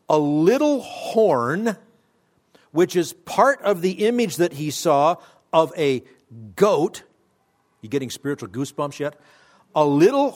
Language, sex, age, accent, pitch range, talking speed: English, male, 50-69, American, 125-180 Hz, 135 wpm